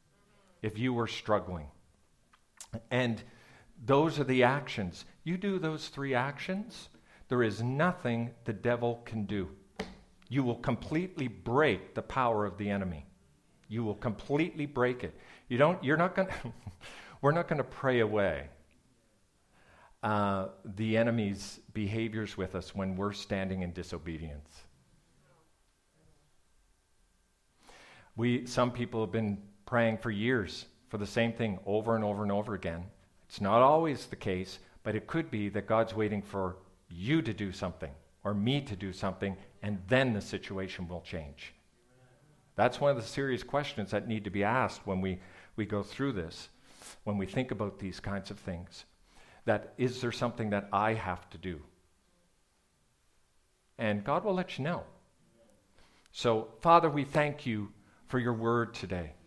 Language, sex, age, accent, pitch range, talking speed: English, male, 50-69, American, 95-125 Hz, 160 wpm